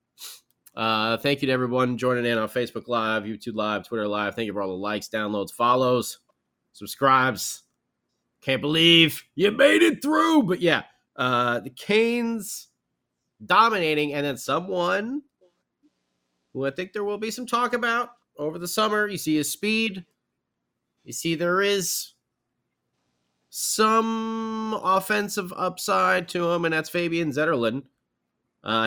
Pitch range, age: 120-205 Hz, 30-49